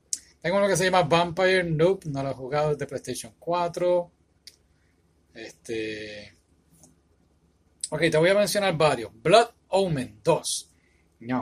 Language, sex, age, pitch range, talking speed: Spanish, male, 30-49, 105-165 Hz, 135 wpm